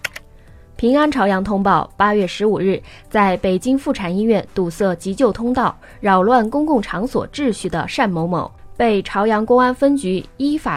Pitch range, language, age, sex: 180-245 Hz, Chinese, 20-39, female